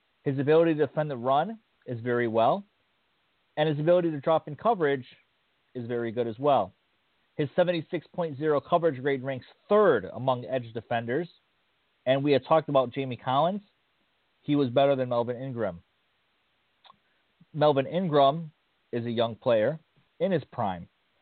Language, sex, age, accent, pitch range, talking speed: English, male, 40-59, American, 130-170 Hz, 145 wpm